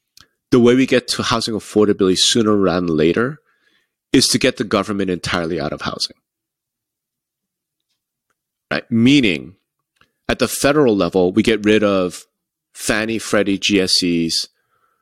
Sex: male